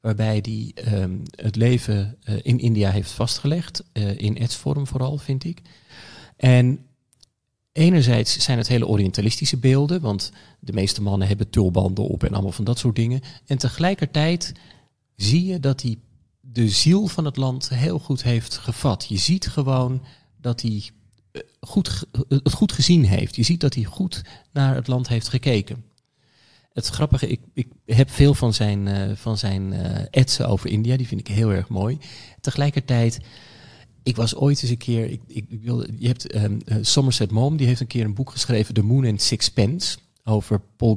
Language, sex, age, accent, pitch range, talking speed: Dutch, male, 40-59, Dutch, 110-135 Hz, 175 wpm